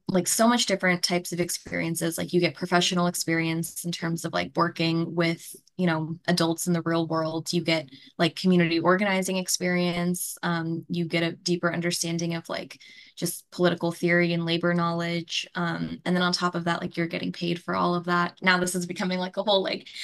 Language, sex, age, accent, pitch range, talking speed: English, female, 10-29, American, 170-185 Hz, 205 wpm